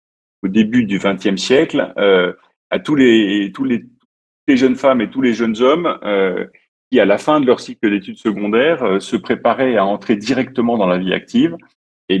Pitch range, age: 105-130 Hz, 40-59